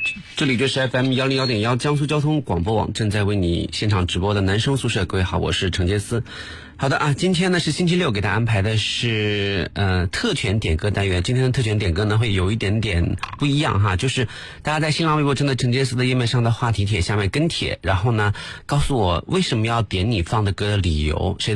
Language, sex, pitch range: Chinese, male, 95-130 Hz